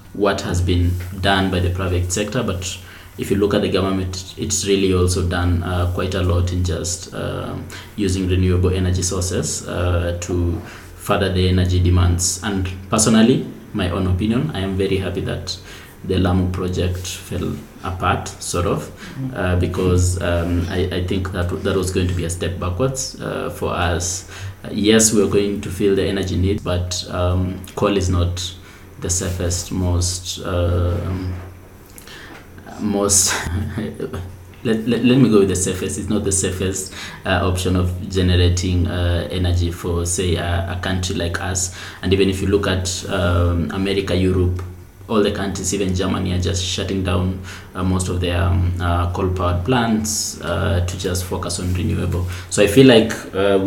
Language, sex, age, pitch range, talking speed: English, male, 20-39, 90-100 Hz, 170 wpm